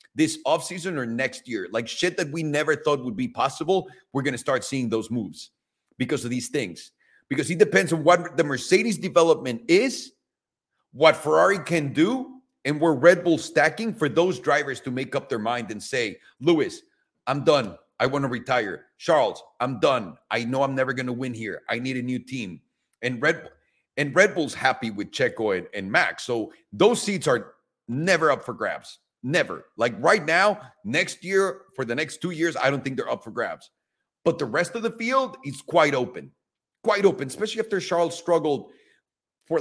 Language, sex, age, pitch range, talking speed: English, male, 40-59, 130-185 Hz, 190 wpm